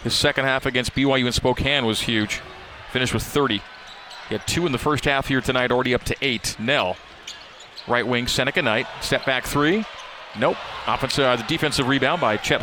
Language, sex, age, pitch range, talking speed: English, male, 40-59, 125-155 Hz, 195 wpm